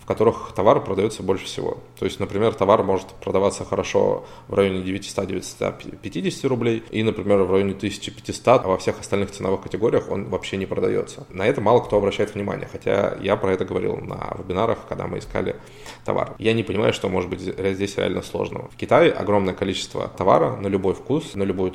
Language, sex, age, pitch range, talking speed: Russian, male, 20-39, 95-115 Hz, 190 wpm